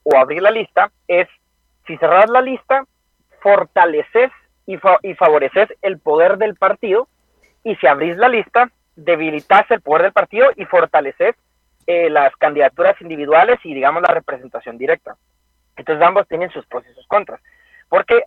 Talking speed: 160 wpm